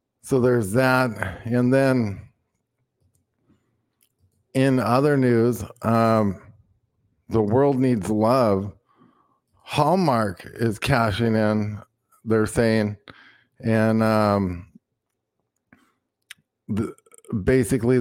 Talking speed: 75 wpm